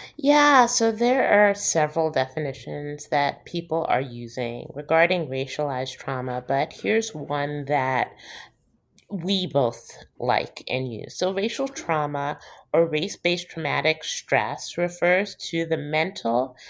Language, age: English, 30-49